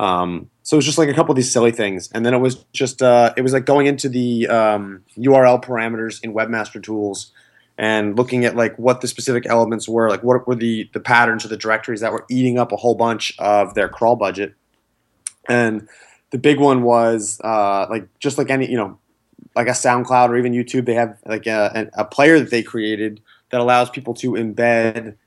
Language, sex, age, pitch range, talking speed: English, male, 20-39, 110-130 Hz, 215 wpm